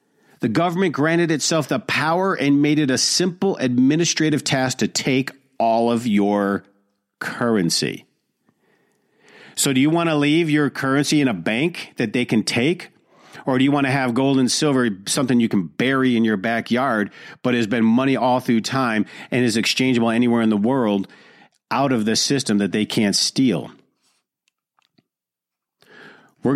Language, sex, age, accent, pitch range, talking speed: English, male, 50-69, American, 110-140 Hz, 165 wpm